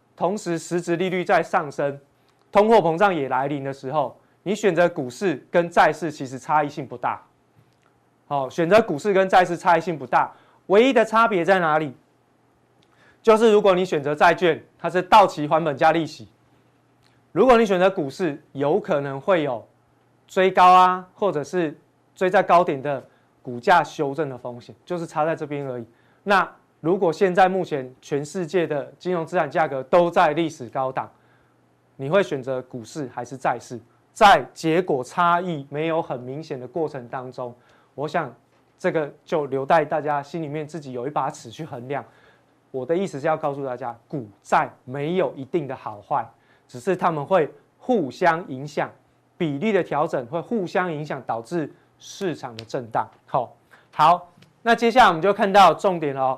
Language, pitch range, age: Chinese, 135-180 Hz, 20-39